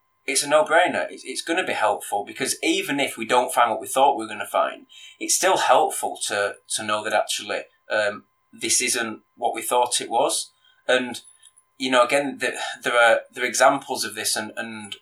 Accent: British